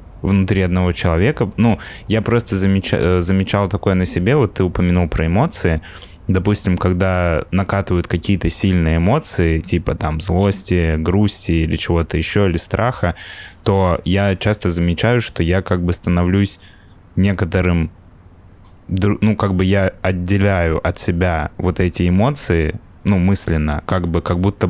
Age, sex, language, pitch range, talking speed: 20-39, male, Russian, 85-100 Hz, 140 wpm